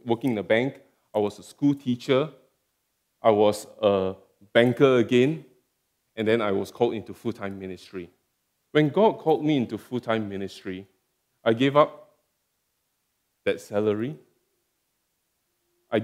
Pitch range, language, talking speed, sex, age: 105-140 Hz, English, 130 wpm, male, 20-39